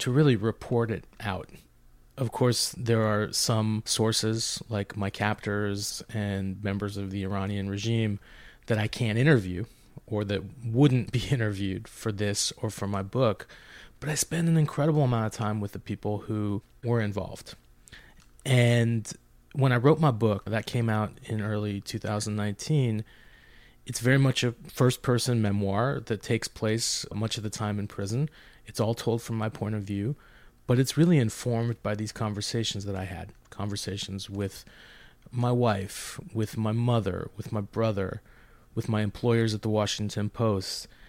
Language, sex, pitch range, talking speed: English, male, 105-125 Hz, 165 wpm